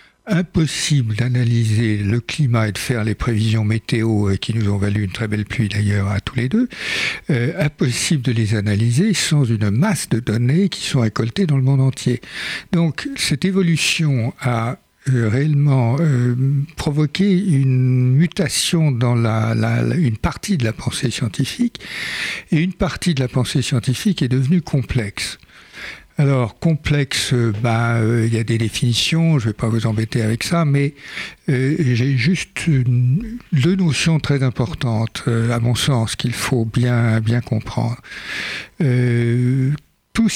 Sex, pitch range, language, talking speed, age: male, 115-150 Hz, French, 155 wpm, 60-79